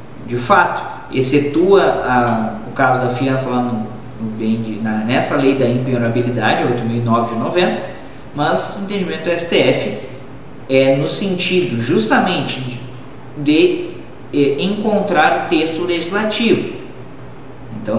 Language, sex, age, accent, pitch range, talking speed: Portuguese, male, 20-39, Brazilian, 125-145 Hz, 115 wpm